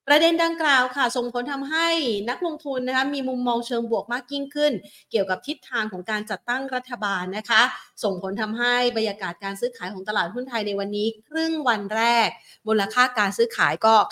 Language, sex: Thai, female